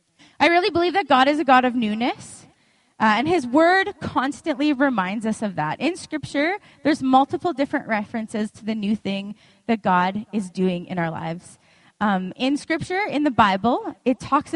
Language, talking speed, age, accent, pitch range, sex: English, 180 wpm, 20-39, American, 200-275 Hz, female